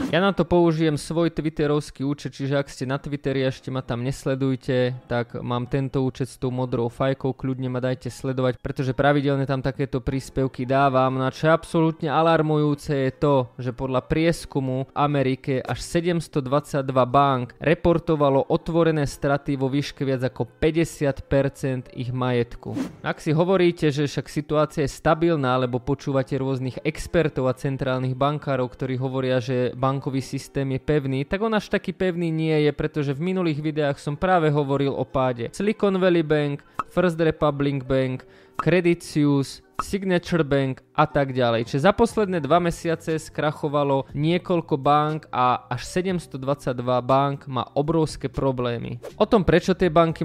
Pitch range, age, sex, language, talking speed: 130-160 Hz, 20-39, male, Czech, 155 wpm